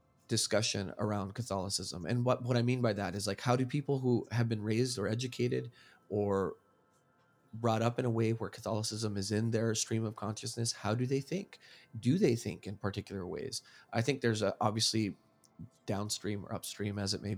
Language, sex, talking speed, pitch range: English, male, 195 wpm, 105-125 Hz